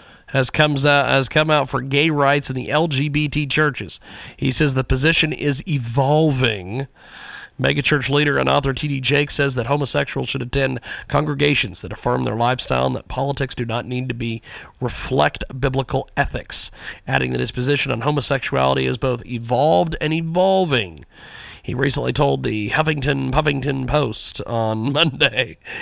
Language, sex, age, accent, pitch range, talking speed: English, male, 40-59, American, 115-145 Hz, 145 wpm